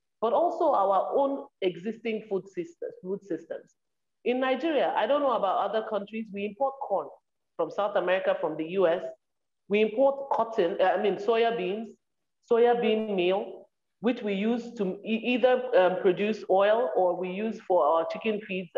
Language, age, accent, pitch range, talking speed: English, 40-59, Nigerian, 195-255 Hz, 165 wpm